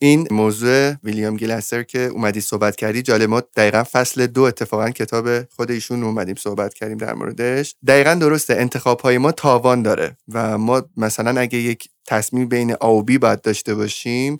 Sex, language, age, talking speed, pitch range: male, Persian, 30-49, 170 wpm, 115-145 Hz